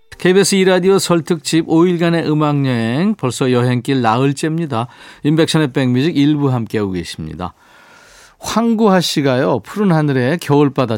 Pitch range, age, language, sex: 125-165 Hz, 40-59, Korean, male